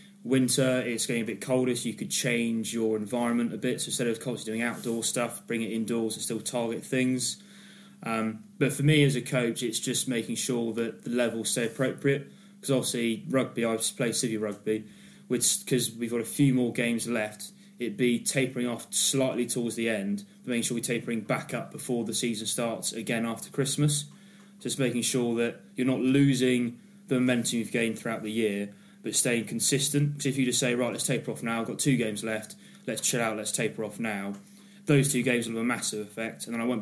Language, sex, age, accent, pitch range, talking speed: English, male, 20-39, British, 115-135 Hz, 215 wpm